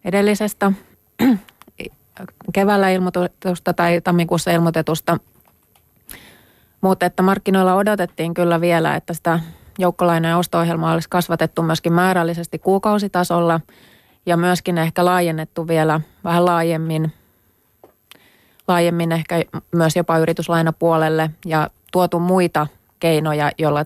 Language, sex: Finnish, female